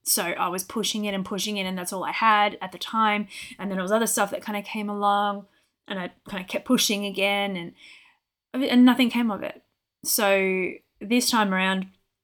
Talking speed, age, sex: 215 wpm, 20-39, female